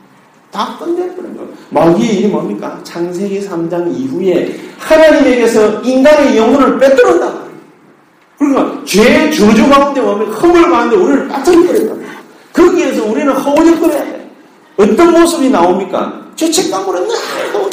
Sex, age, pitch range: male, 40-59, 240-335 Hz